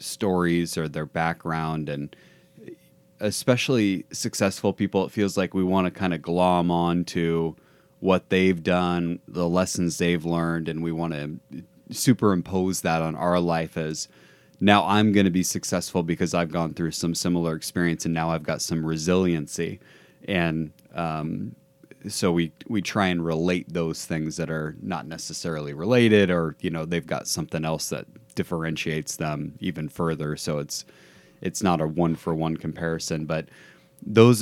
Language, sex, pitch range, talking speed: English, male, 80-95 Hz, 160 wpm